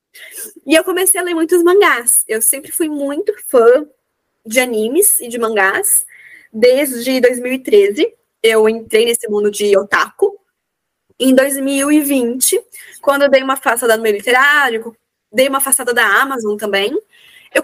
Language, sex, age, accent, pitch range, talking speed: Portuguese, female, 20-39, Brazilian, 240-350 Hz, 145 wpm